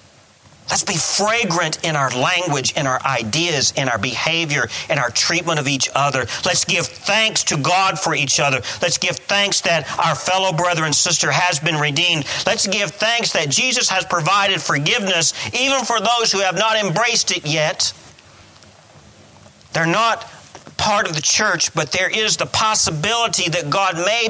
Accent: American